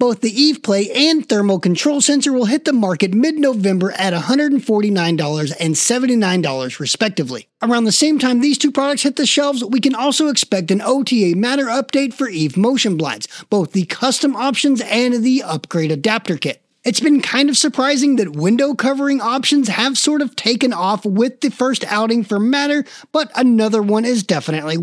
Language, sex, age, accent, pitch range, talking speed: English, male, 30-49, American, 195-275 Hz, 180 wpm